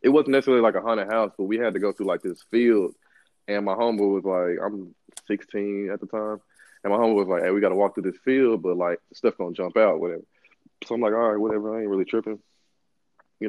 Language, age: English, 20-39